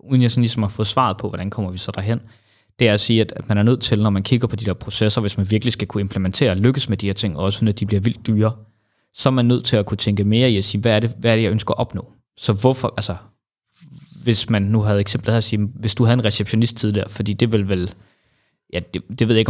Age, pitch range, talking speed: 20-39, 100-120 Hz, 295 wpm